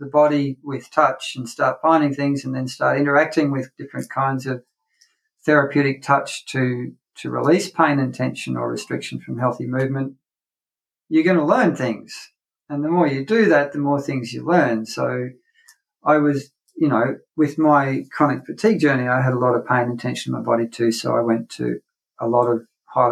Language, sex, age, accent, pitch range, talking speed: English, male, 50-69, Australian, 120-145 Hz, 195 wpm